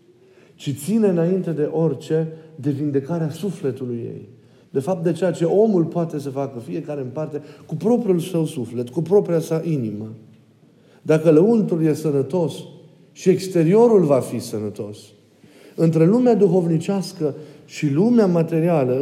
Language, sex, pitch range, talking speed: Romanian, male, 135-180 Hz, 140 wpm